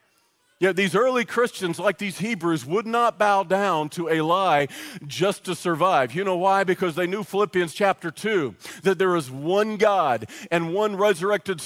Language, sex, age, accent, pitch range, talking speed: English, male, 40-59, American, 155-205 Hz, 170 wpm